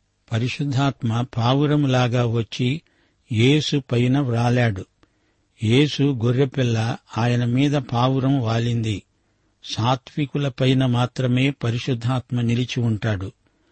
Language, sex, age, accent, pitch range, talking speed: Telugu, male, 50-69, native, 115-135 Hz, 85 wpm